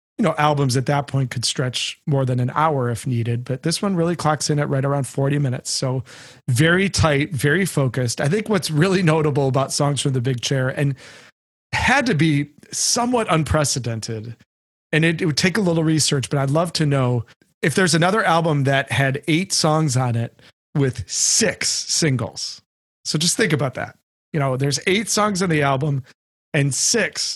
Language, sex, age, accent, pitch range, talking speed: English, male, 40-59, American, 130-155 Hz, 195 wpm